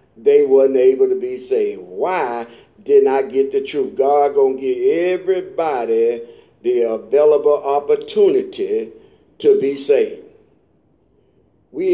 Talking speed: 120 wpm